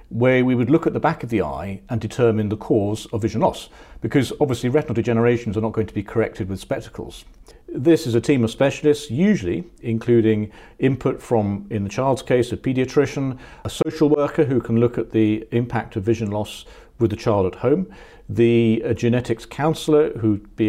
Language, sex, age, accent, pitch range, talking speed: English, male, 50-69, British, 110-140 Hz, 195 wpm